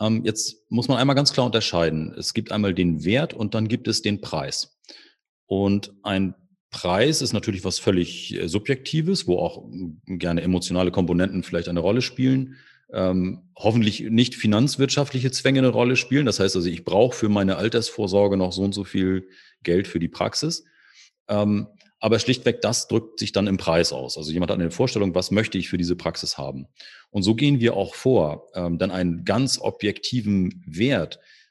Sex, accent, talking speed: male, German, 175 wpm